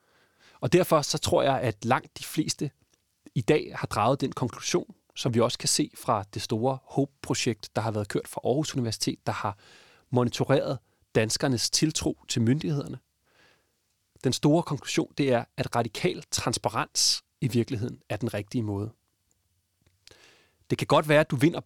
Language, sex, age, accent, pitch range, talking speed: Danish, male, 30-49, native, 115-150 Hz, 165 wpm